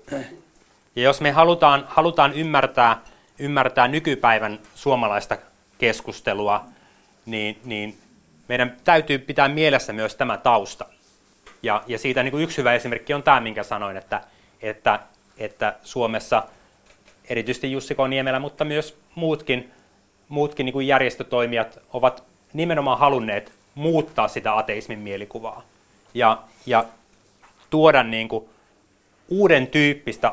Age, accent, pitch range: 30-49, native, 110-135 Hz